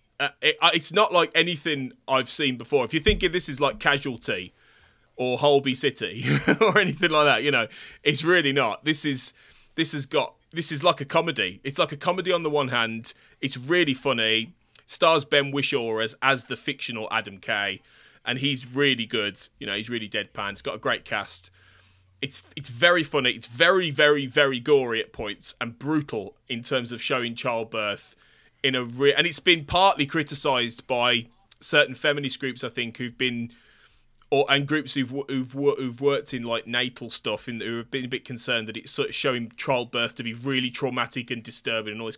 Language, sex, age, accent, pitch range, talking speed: English, male, 20-39, British, 120-150 Hz, 200 wpm